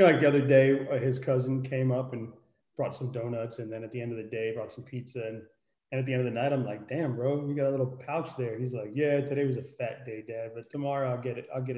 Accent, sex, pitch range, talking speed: American, male, 120-135 Hz, 300 wpm